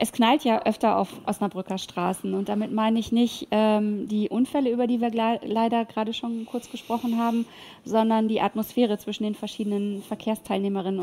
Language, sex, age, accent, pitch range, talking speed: German, female, 20-39, German, 205-230 Hz, 170 wpm